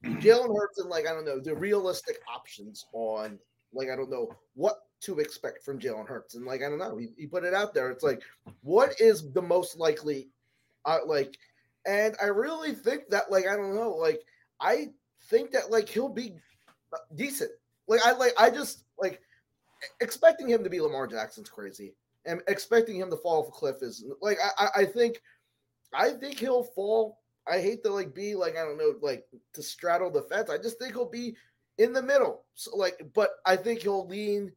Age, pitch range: 20-39, 175-255 Hz